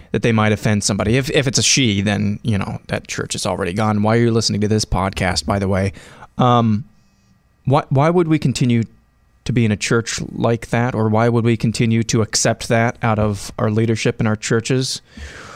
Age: 20-39